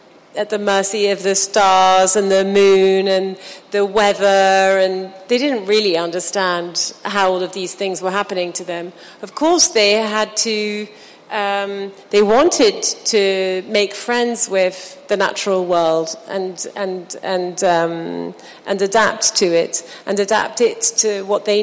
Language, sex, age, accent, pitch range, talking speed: English, female, 40-59, British, 190-230 Hz, 155 wpm